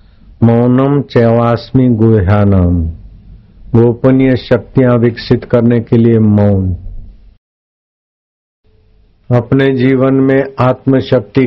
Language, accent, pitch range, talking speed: Hindi, native, 105-125 Hz, 75 wpm